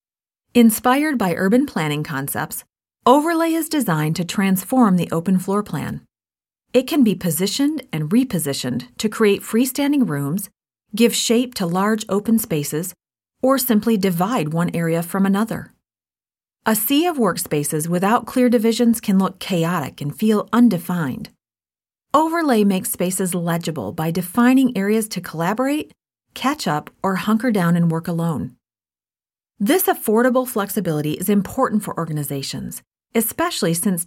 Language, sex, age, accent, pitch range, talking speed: English, female, 40-59, American, 175-240 Hz, 135 wpm